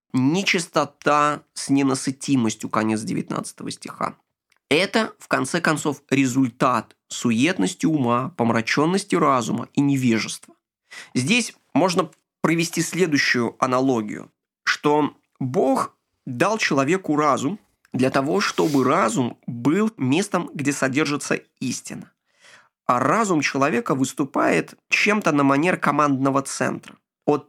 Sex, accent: male, native